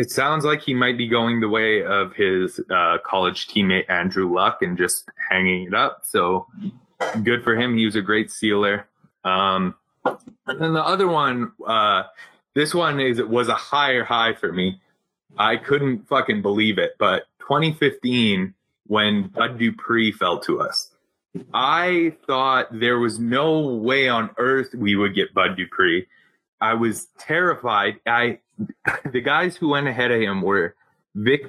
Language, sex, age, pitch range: English, male, 20-39, 105-135 Hz